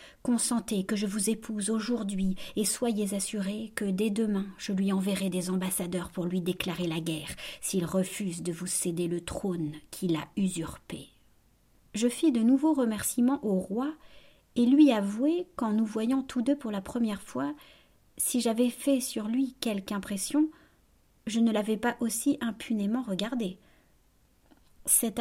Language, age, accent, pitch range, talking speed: French, 40-59, French, 195-245 Hz, 155 wpm